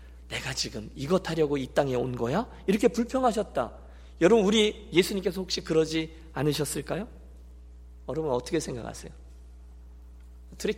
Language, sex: Korean, male